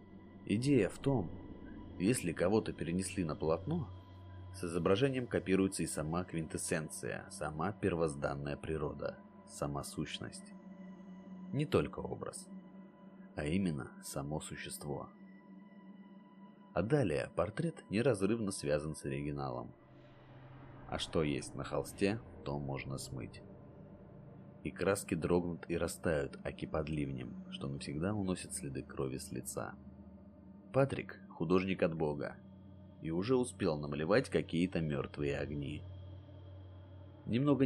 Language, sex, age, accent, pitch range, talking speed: Russian, male, 30-49, native, 80-130 Hz, 110 wpm